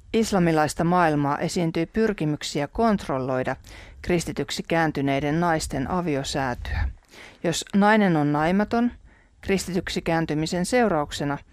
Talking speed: 85 wpm